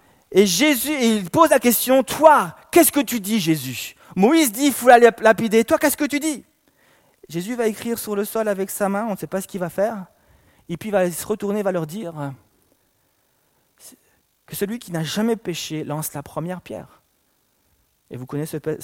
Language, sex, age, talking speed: French, male, 30-49, 200 wpm